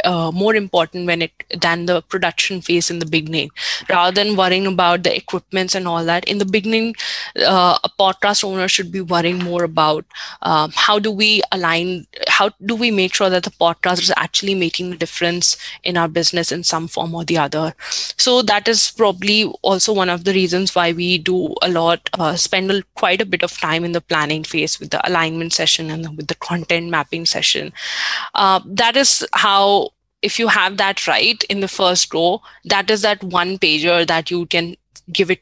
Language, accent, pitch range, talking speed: English, Indian, 170-200 Hz, 200 wpm